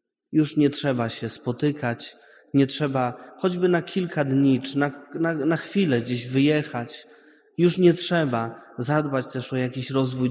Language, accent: Polish, native